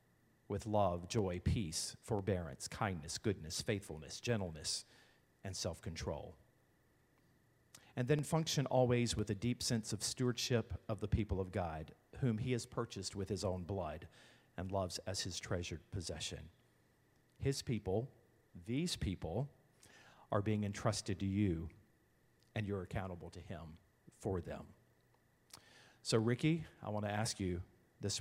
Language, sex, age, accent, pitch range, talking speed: English, male, 40-59, American, 95-115 Hz, 135 wpm